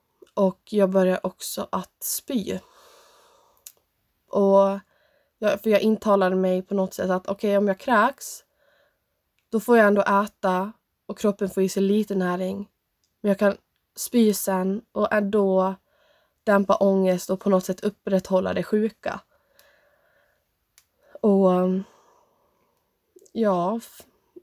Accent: native